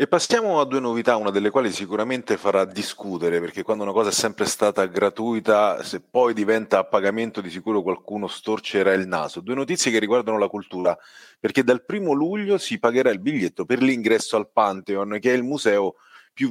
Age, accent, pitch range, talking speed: 30-49, native, 100-130 Hz, 195 wpm